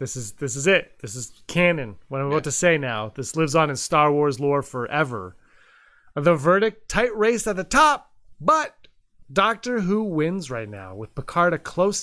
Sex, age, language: male, 30-49, English